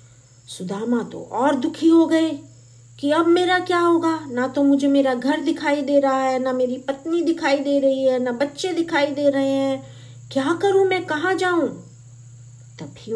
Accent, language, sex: native, Hindi, female